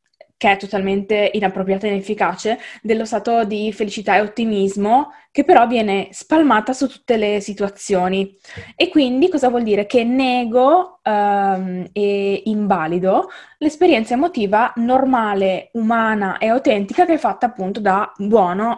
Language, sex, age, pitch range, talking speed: Italian, female, 20-39, 195-235 Hz, 130 wpm